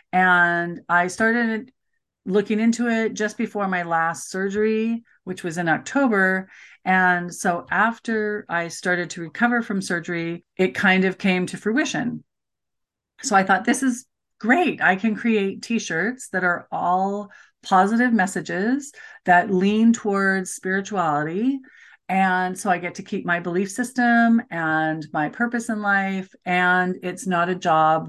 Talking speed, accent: 145 wpm, American